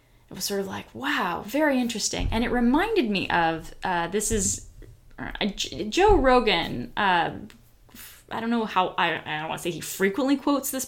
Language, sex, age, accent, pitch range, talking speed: English, female, 10-29, American, 180-225 Hz, 195 wpm